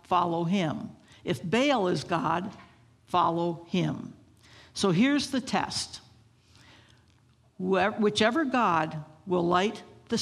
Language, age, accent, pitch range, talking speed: English, 60-79, American, 170-220 Hz, 100 wpm